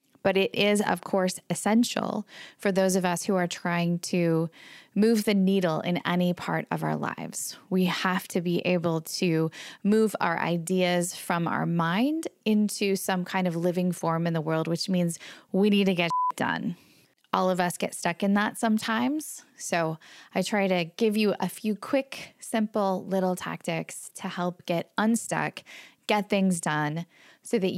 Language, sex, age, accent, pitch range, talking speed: English, female, 20-39, American, 170-205 Hz, 175 wpm